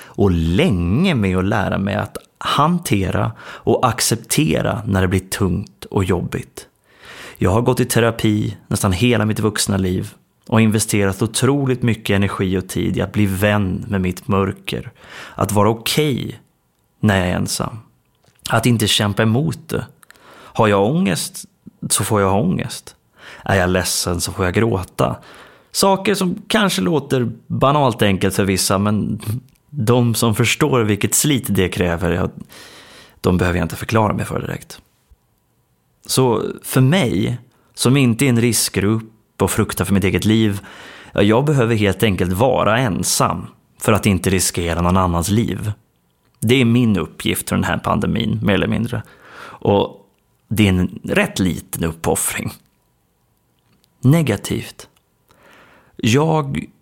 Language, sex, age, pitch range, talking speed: Swedish, male, 30-49, 95-120 Hz, 145 wpm